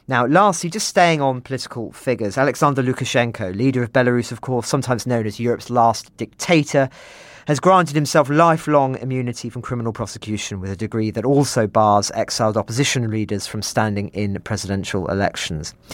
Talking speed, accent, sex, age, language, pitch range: 160 wpm, British, male, 40-59, English, 110-140 Hz